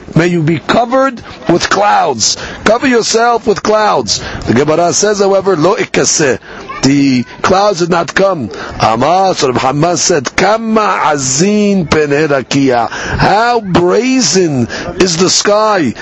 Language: English